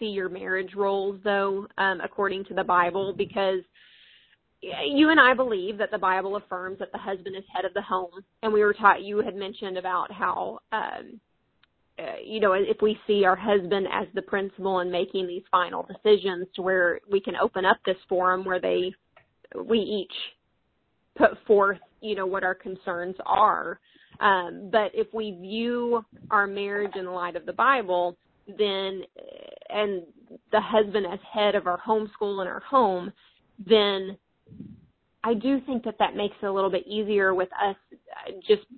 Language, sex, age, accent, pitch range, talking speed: English, female, 30-49, American, 185-210 Hz, 170 wpm